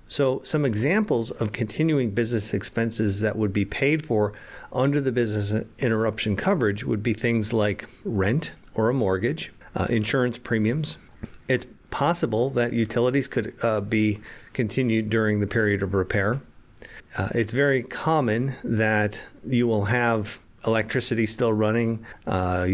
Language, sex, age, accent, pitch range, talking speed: English, male, 50-69, American, 105-125 Hz, 140 wpm